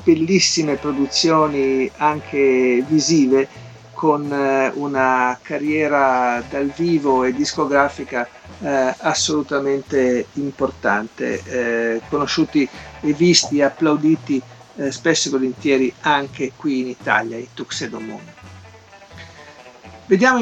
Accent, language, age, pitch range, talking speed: native, Italian, 50-69, 135-175 Hz, 90 wpm